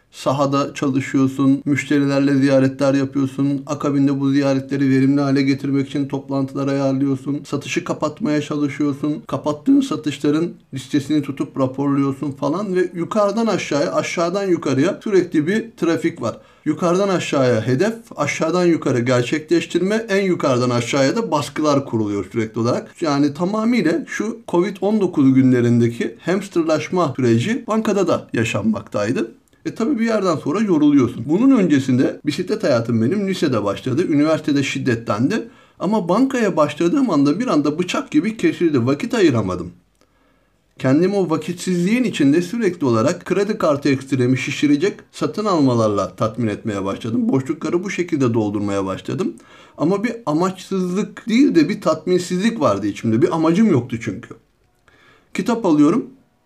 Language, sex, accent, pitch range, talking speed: Turkish, male, native, 135-190 Hz, 125 wpm